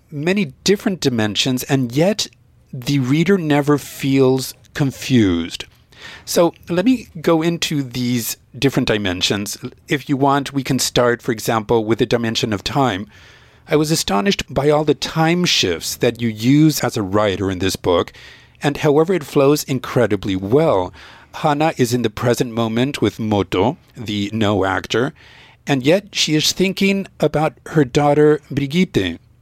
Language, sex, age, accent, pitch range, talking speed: English, male, 50-69, American, 115-150 Hz, 150 wpm